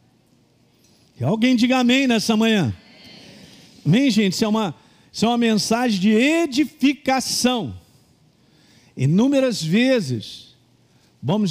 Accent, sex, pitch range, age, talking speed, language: Brazilian, male, 205-270 Hz, 50-69, 100 wpm, Portuguese